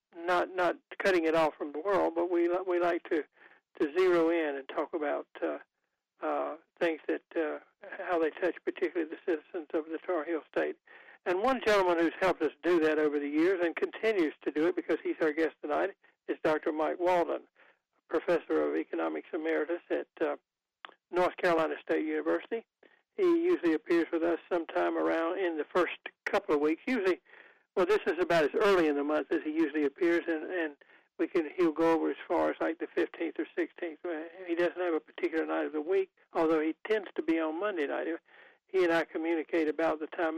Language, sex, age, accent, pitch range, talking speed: English, male, 60-79, American, 155-205 Hz, 200 wpm